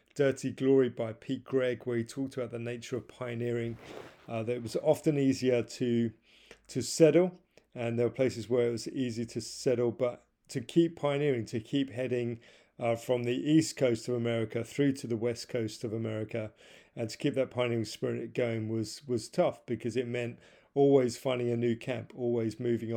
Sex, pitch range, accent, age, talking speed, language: male, 115-130 Hz, British, 40-59, 190 wpm, English